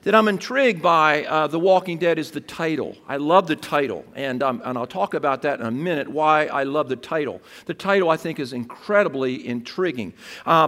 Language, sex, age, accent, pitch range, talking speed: English, male, 50-69, American, 150-205 Hz, 215 wpm